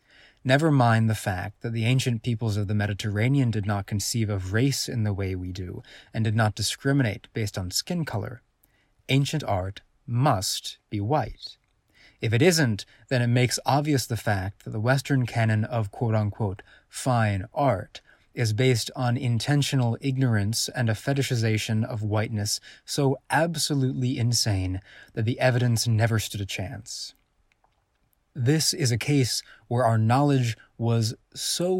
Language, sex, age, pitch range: English, male, 20-39, 105-135 Hz